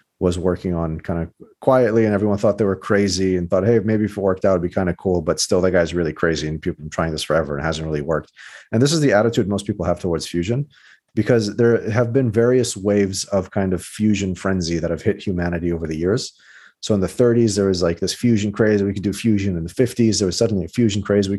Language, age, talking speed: English, 40-59, 265 wpm